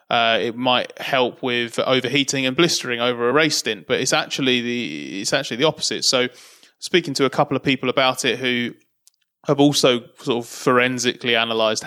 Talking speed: 170 wpm